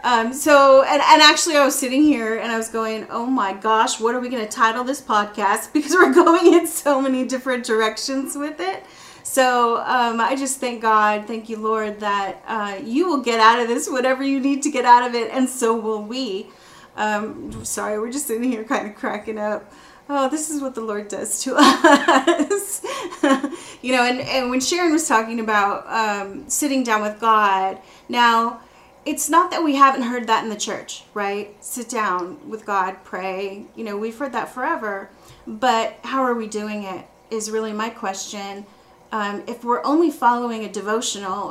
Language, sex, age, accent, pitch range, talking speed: English, female, 30-49, American, 215-270 Hz, 195 wpm